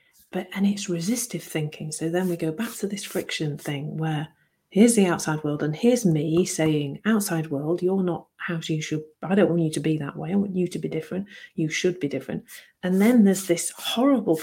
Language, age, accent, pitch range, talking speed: English, 40-59, British, 165-220 Hz, 220 wpm